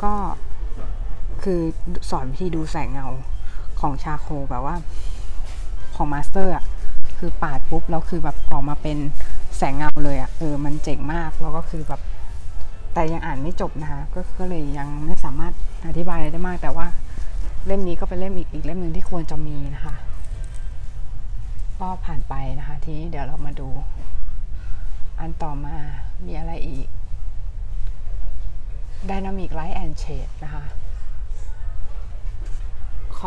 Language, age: Thai, 20-39